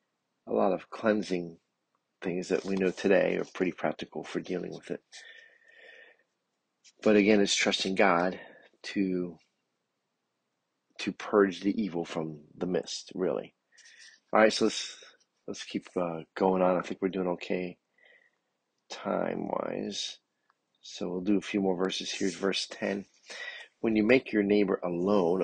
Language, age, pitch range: English, 40-59, 95-115 Hz